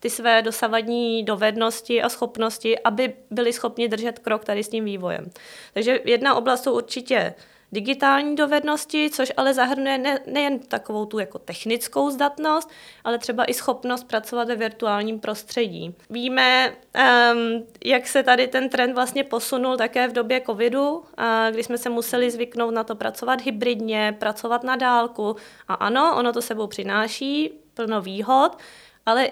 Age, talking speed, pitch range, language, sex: 20-39, 150 wpm, 225-255 Hz, Czech, female